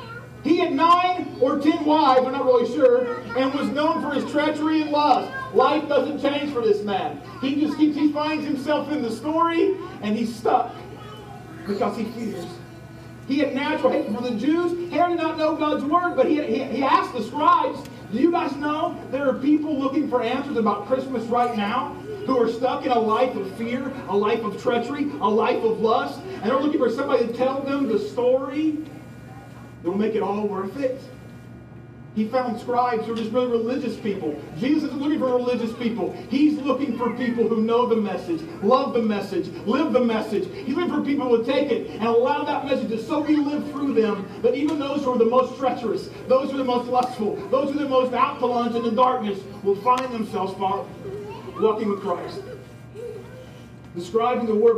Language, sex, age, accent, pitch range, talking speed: English, male, 40-59, American, 220-285 Hz, 205 wpm